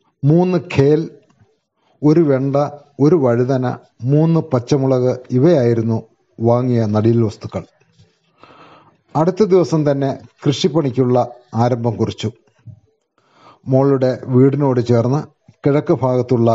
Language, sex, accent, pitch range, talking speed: Malayalam, male, native, 120-150 Hz, 85 wpm